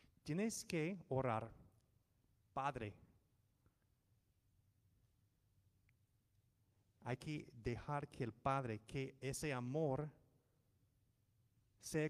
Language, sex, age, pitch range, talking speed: English, male, 30-49, 110-140 Hz, 70 wpm